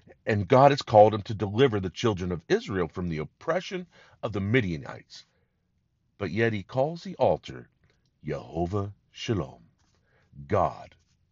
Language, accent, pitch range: English, American, 95-140 Hz